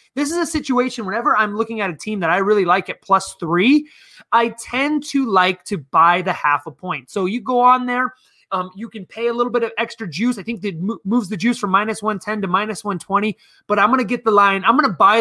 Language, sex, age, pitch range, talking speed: English, male, 20-39, 190-240 Hz, 250 wpm